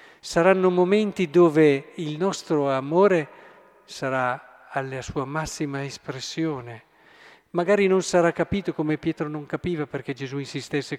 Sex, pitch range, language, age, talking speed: male, 135-165 Hz, Italian, 50-69, 120 wpm